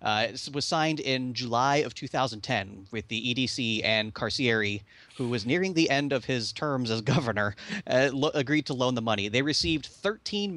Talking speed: 185 wpm